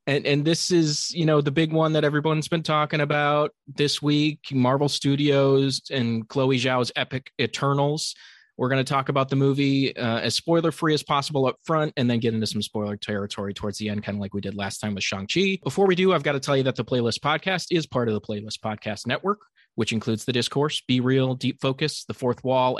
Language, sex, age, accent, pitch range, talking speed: English, male, 20-39, American, 120-160 Hz, 230 wpm